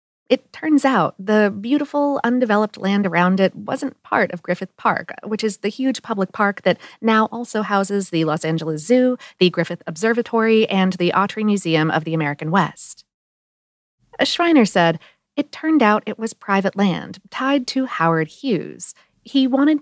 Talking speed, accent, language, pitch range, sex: 165 wpm, American, English, 175-240 Hz, female